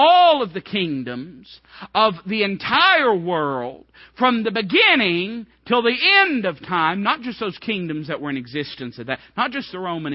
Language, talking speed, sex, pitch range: English, 175 wpm, male, 130-185 Hz